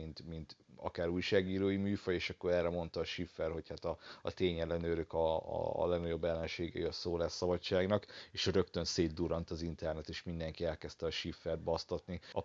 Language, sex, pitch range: Hungarian, male, 85-105 Hz